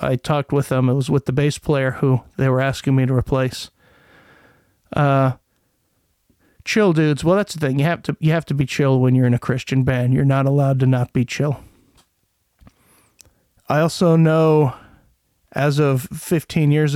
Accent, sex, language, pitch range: American, male, English, 130-150 Hz